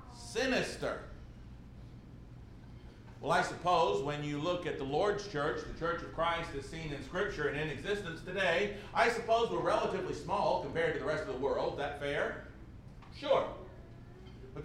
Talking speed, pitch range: 165 wpm, 180-240 Hz